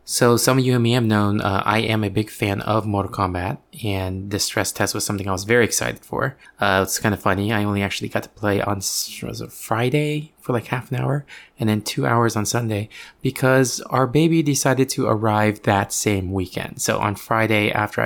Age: 20-39